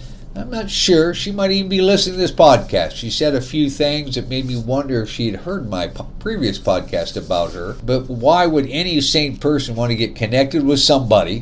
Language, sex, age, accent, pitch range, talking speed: English, male, 50-69, American, 100-130 Hz, 220 wpm